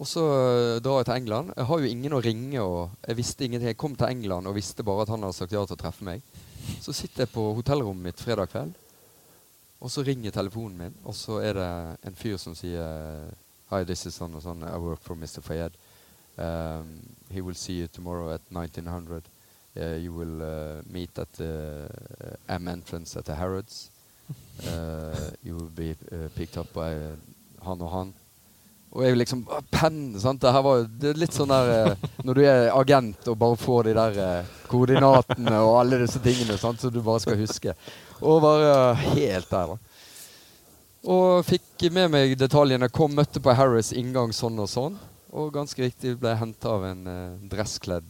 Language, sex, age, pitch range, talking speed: English, male, 30-49, 90-125 Hz, 190 wpm